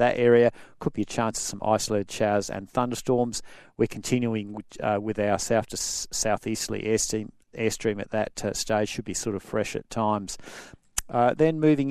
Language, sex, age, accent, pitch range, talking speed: English, male, 50-69, Australian, 110-135 Hz, 180 wpm